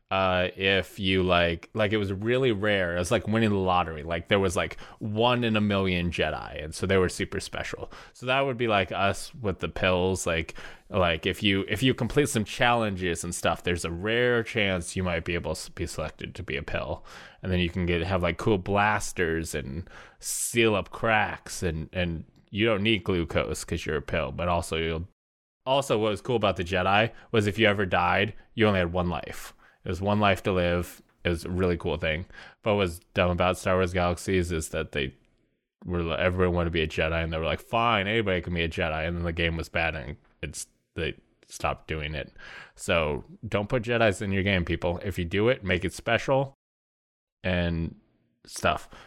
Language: English